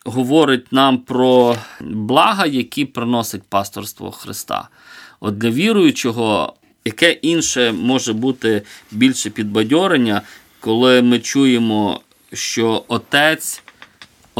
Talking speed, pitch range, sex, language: 90 wpm, 110-130 Hz, male, Ukrainian